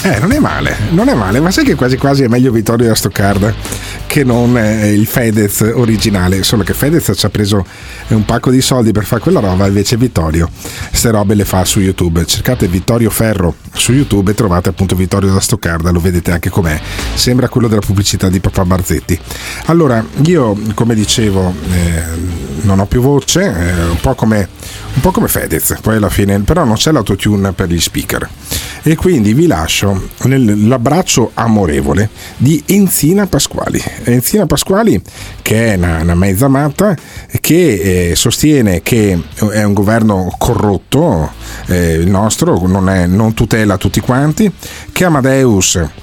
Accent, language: native, Italian